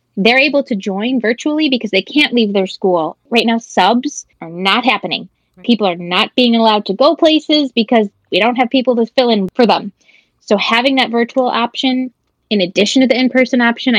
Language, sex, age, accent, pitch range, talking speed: English, female, 20-39, American, 195-245 Hz, 195 wpm